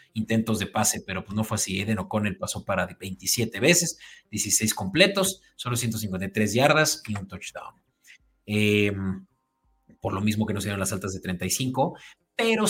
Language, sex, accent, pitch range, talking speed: Spanish, male, Mexican, 105-140 Hz, 165 wpm